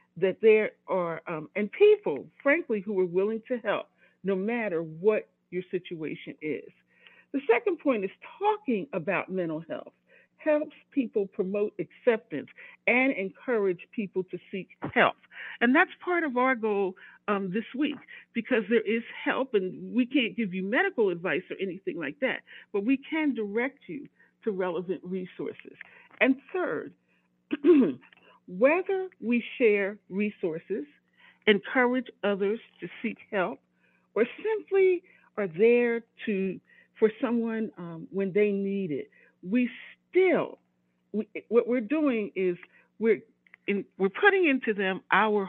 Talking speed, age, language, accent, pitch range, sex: 140 wpm, 50-69, English, American, 190-250 Hz, female